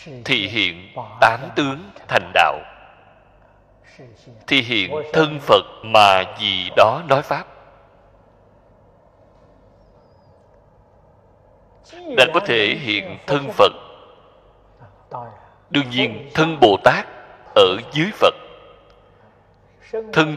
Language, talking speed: Vietnamese, 90 wpm